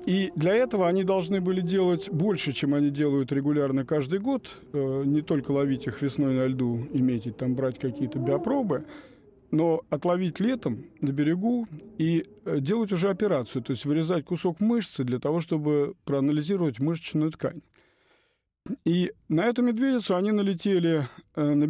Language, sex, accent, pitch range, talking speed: Russian, male, native, 140-185 Hz, 145 wpm